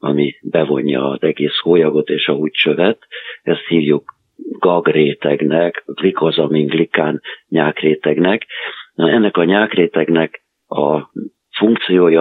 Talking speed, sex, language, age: 95 wpm, male, Hungarian, 50-69